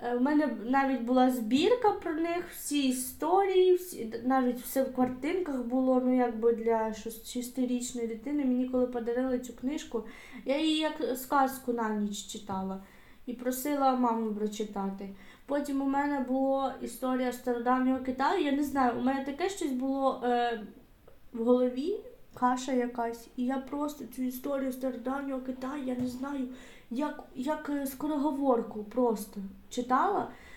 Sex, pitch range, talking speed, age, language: female, 240-275 Hz, 135 wpm, 20-39, Ukrainian